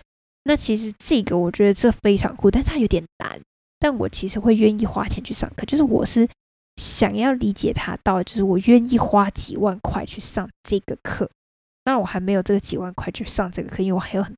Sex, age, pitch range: female, 10-29, 195-240 Hz